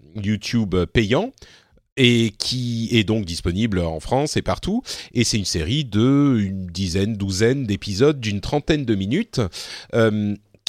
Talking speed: 140 wpm